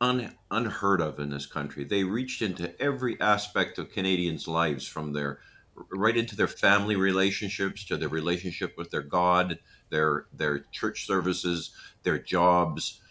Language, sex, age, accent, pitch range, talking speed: English, male, 50-69, American, 80-105 Hz, 150 wpm